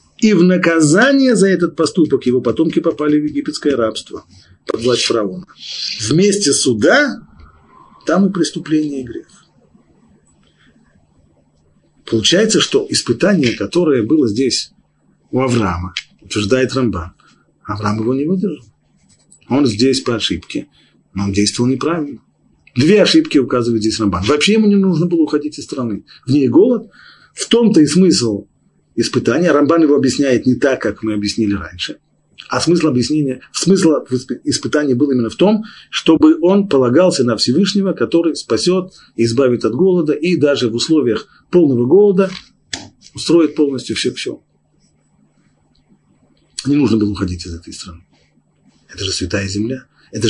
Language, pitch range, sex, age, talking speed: Russian, 110-165 Hz, male, 40-59, 135 wpm